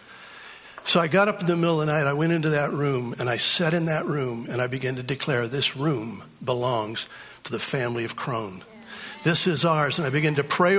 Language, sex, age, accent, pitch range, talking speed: English, male, 60-79, American, 135-160 Hz, 235 wpm